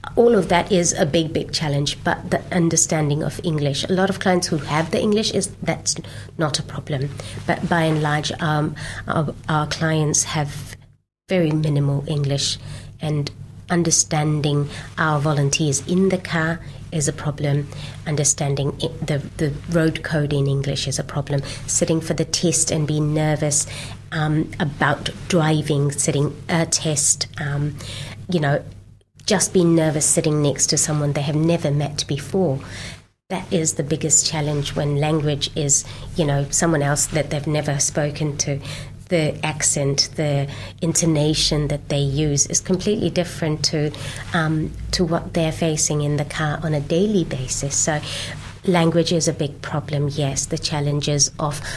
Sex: female